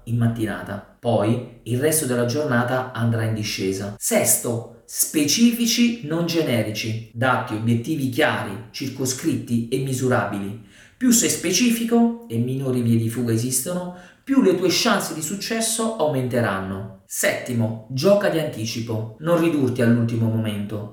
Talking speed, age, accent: 125 wpm, 40-59, native